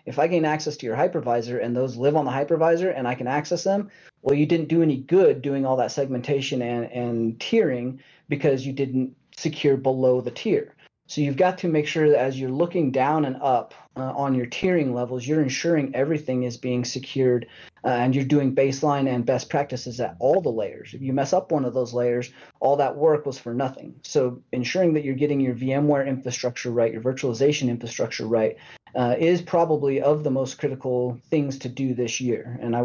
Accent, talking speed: American, 210 wpm